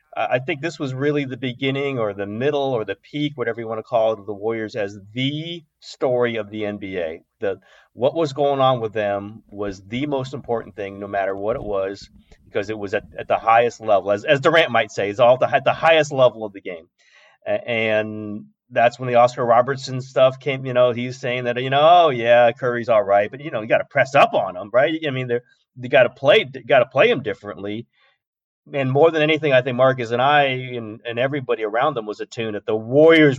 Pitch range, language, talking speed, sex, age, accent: 110-135 Hz, English, 225 wpm, male, 30-49, American